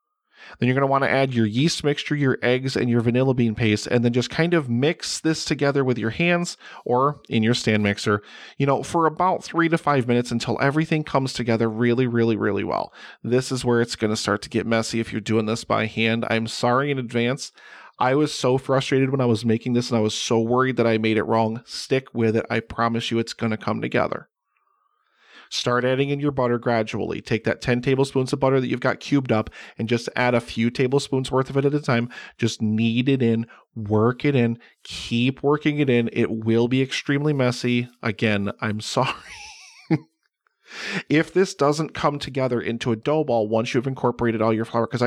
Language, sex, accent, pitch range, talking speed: English, male, American, 115-140 Hz, 215 wpm